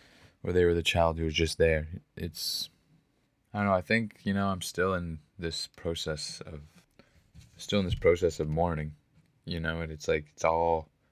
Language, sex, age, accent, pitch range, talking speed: English, male, 20-39, American, 80-90 Hz, 195 wpm